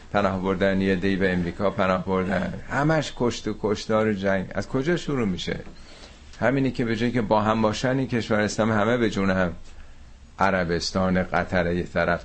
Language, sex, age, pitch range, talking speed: Persian, male, 50-69, 80-110 Hz, 175 wpm